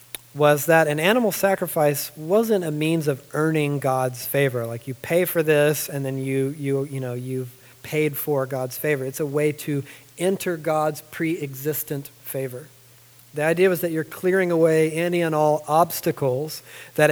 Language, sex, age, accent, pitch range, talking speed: English, male, 40-59, American, 135-165 Hz, 170 wpm